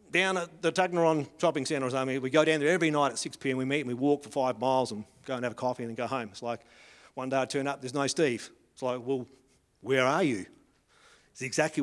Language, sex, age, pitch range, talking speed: English, male, 50-69, 125-155 Hz, 255 wpm